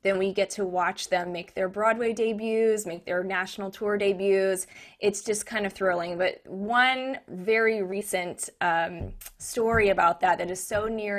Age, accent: 20-39, American